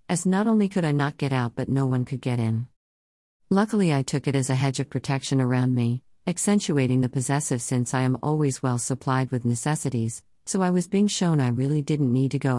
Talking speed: 225 wpm